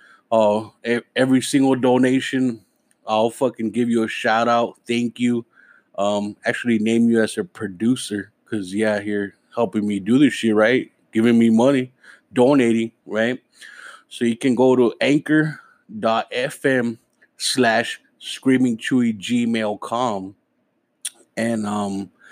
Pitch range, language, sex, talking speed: 105-125 Hz, English, male, 130 wpm